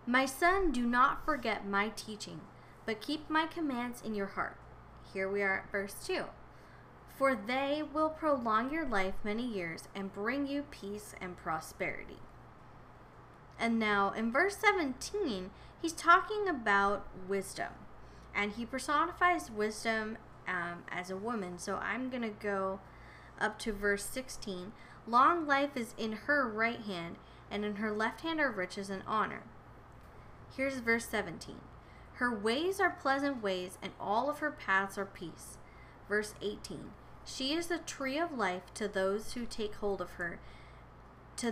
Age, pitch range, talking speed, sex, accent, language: 20-39, 195-275 Hz, 155 wpm, female, American, English